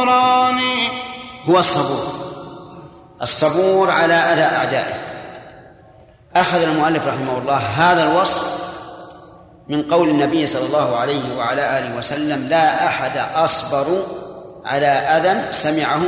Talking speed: 100 wpm